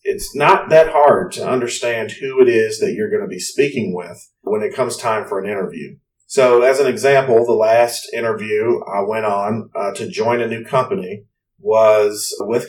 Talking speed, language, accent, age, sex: 195 wpm, English, American, 30-49, male